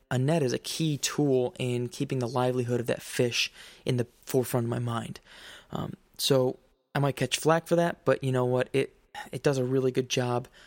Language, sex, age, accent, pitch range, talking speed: English, male, 20-39, American, 125-150 Hz, 215 wpm